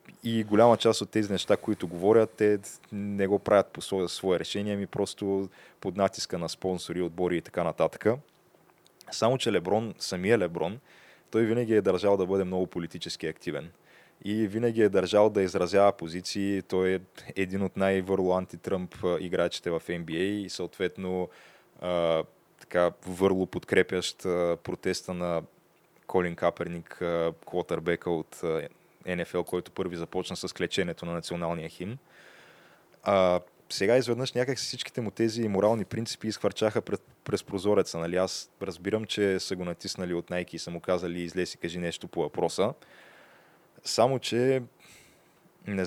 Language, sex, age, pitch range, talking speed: Bulgarian, male, 20-39, 90-105 Hz, 145 wpm